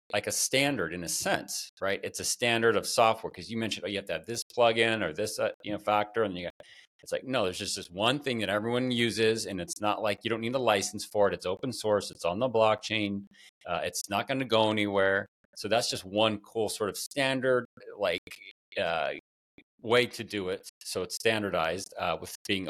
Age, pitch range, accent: 40-59, 95-115 Hz, American